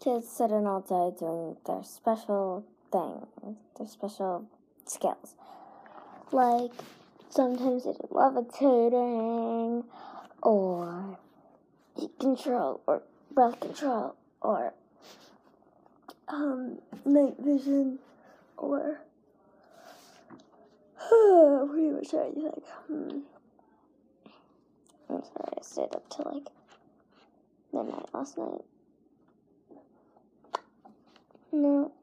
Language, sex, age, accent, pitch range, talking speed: English, female, 10-29, American, 240-320 Hz, 80 wpm